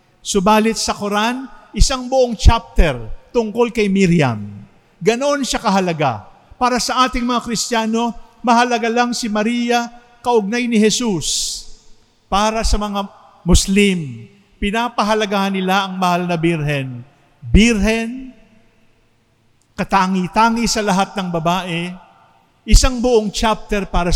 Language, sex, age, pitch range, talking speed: English, male, 50-69, 175-225 Hz, 110 wpm